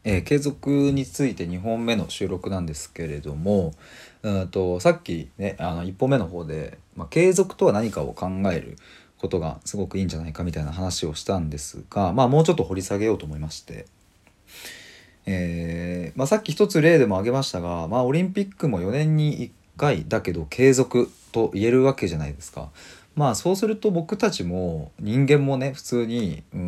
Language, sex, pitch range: Japanese, male, 85-140 Hz